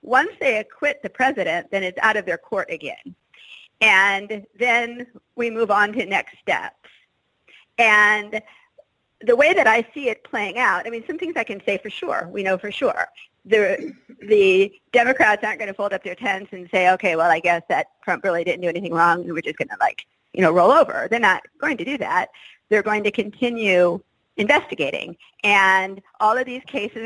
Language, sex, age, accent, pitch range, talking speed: English, female, 40-59, American, 190-245 Hz, 200 wpm